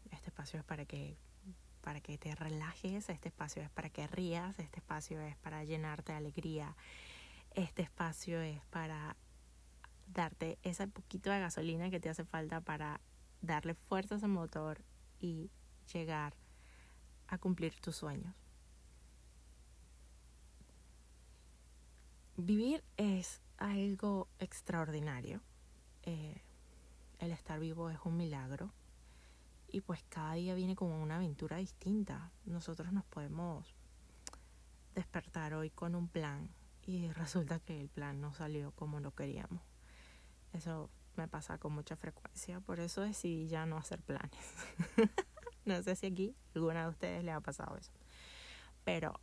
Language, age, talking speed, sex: Spanish, 20-39, 135 wpm, female